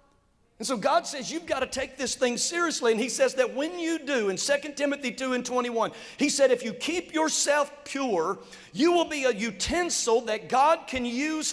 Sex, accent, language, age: male, American, English, 50-69